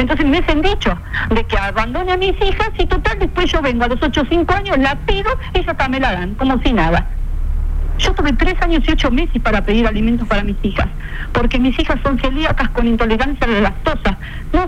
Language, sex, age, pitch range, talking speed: Spanish, female, 40-59, 220-315 Hz, 225 wpm